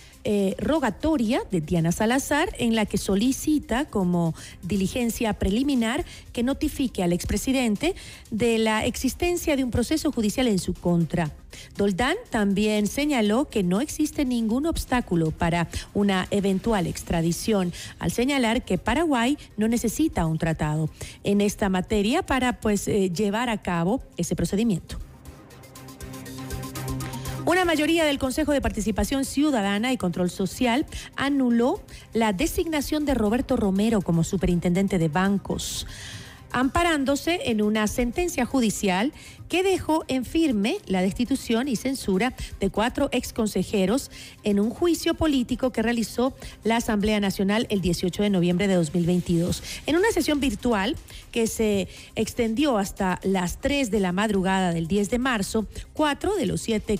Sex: female